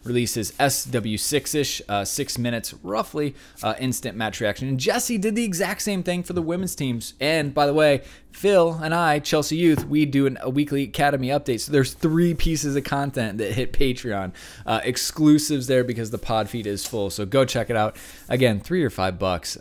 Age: 20-39